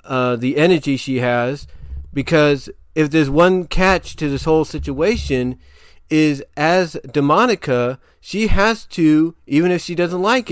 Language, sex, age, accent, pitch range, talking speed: English, male, 40-59, American, 130-160 Hz, 145 wpm